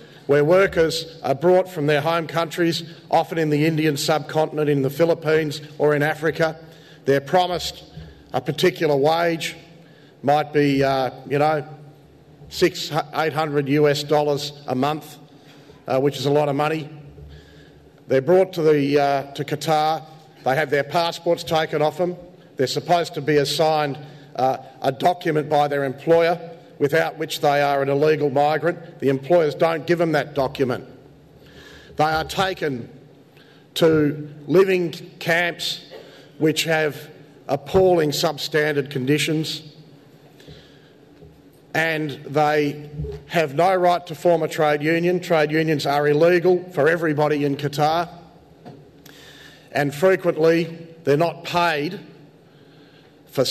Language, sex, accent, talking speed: English, male, Australian, 130 wpm